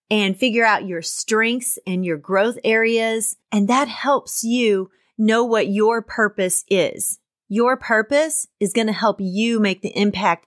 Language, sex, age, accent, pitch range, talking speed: English, female, 30-49, American, 200-255 Hz, 160 wpm